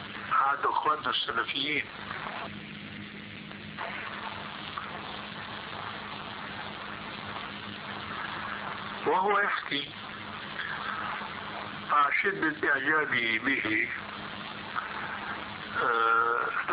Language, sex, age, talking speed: Arabic, male, 60-79, 35 wpm